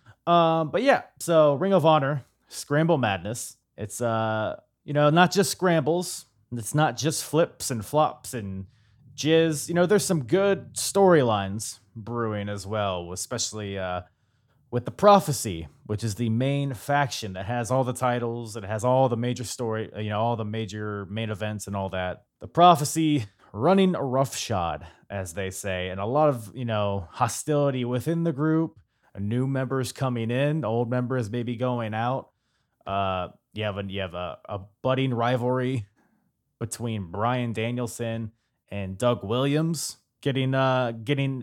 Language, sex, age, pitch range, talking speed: English, male, 20-39, 105-140 Hz, 160 wpm